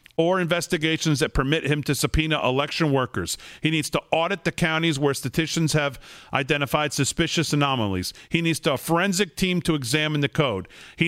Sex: male